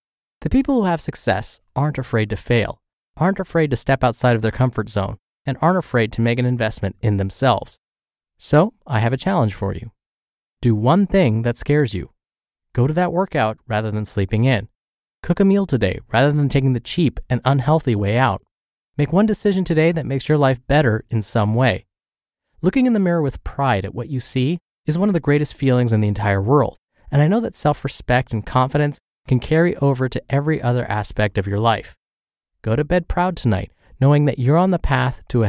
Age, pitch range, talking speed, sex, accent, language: 20-39, 110-150 Hz, 210 wpm, male, American, English